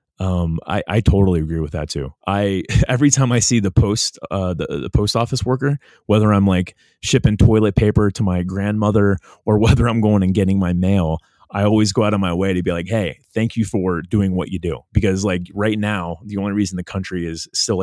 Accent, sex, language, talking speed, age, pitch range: American, male, English, 225 wpm, 30-49, 90-110 Hz